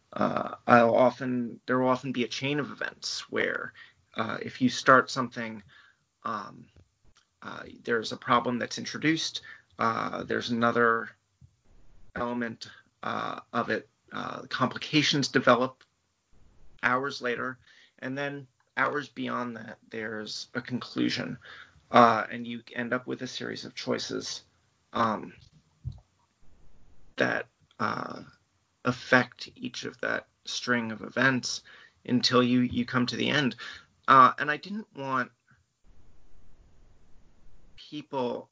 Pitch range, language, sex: 115-140 Hz, English, male